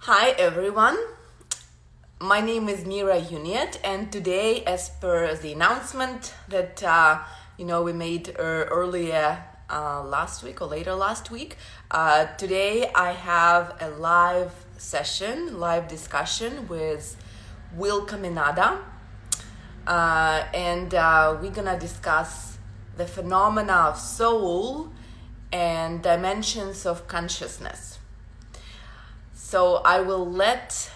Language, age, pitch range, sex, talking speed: English, 20-39, 155-190 Hz, female, 110 wpm